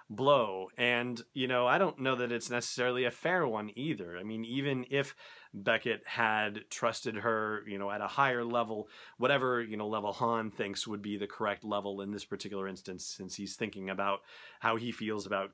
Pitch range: 105-120 Hz